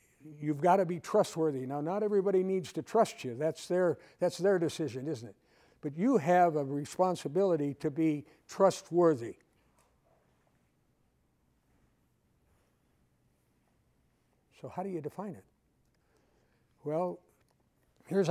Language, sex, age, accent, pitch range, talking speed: English, male, 60-79, American, 140-180 Hz, 115 wpm